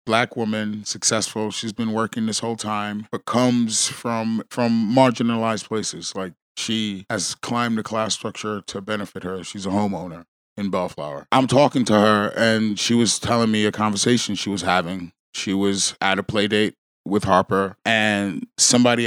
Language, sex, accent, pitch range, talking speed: English, male, American, 100-120 Hz, 170 wpm